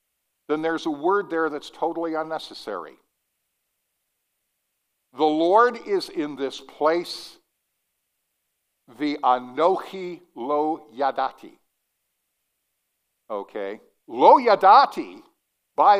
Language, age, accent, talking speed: English, 60-79, American, 85 wpm